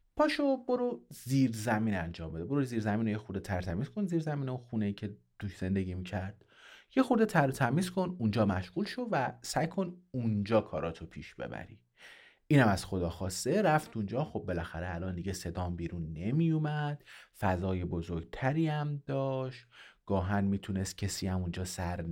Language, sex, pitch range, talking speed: Persian, male, 95-145 Hz, 170 wpm